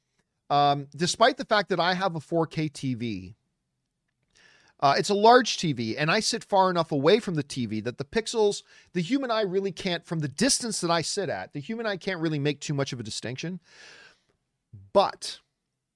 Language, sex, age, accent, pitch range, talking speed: English, male, 40-59, American, 140-195 Hz, 190 wpm